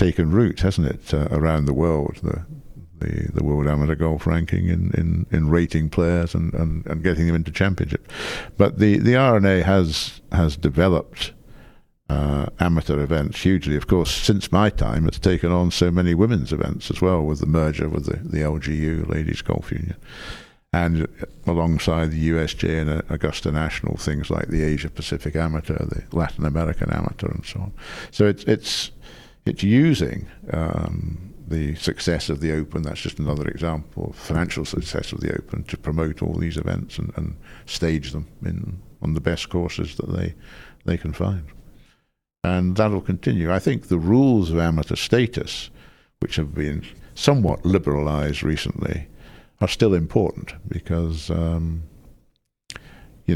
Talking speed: 165 wpm